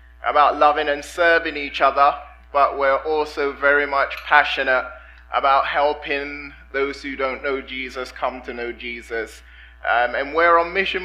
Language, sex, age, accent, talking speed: English, male, 20-39, British, 150 wpm